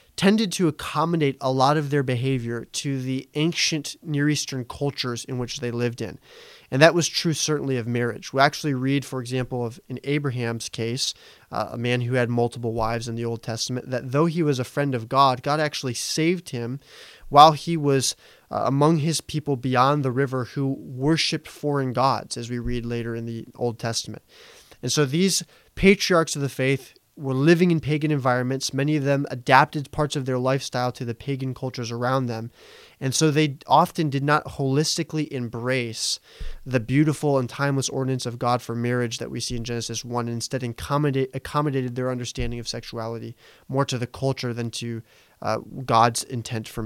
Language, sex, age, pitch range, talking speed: English, male, 20-39, 120-145 Hz, 190 wpm